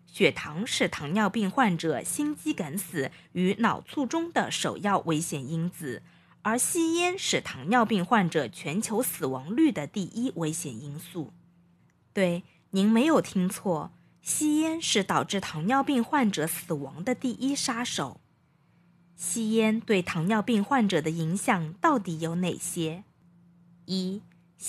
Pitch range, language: 170-245 Hz, Chinese